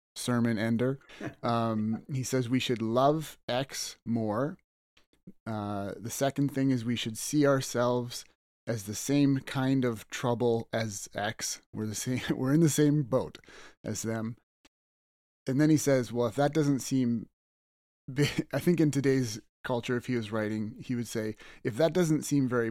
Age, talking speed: 30-49, 165 wpm